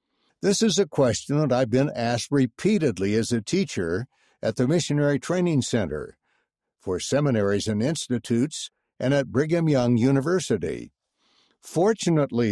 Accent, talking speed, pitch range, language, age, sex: American, 130 wpm, 110-150 Hz, English, 60-79, male